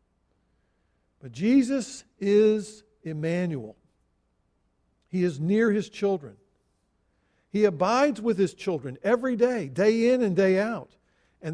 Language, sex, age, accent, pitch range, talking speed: English, male, 50-69, American, 155-210 Hz, 115 wpm